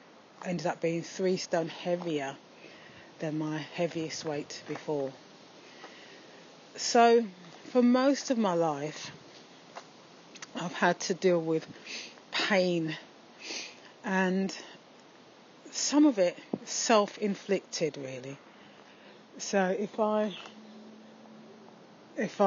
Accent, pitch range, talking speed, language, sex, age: British, 160-190 Hz, 90 wpm, English, female, 30-49